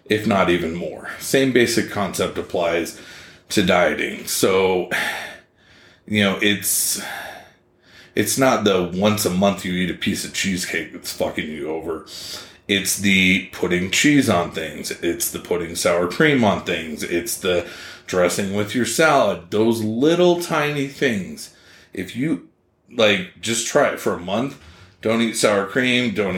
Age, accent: 30-49, American